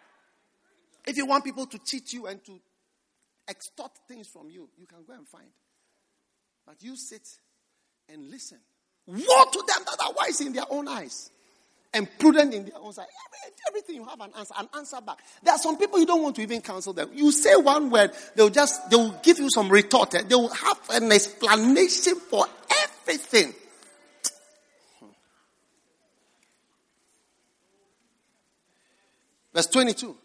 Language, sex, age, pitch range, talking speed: English, male, 50-69, 200-295 Hz, 160 wpm